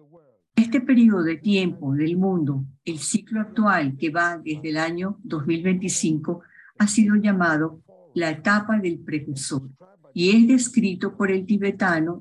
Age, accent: 50-69, American